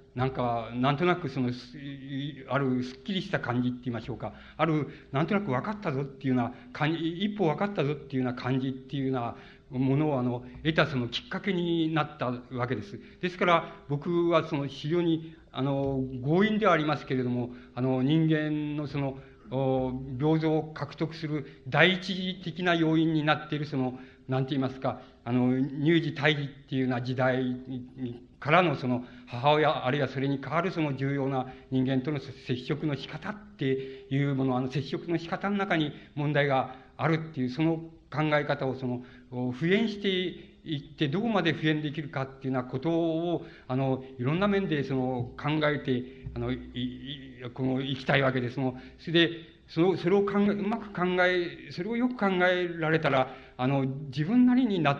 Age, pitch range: 50-69, 130-160 Hz